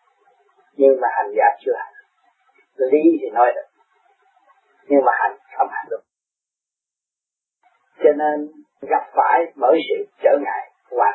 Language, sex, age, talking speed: Vietnamese, male, 40-59, 135 wpm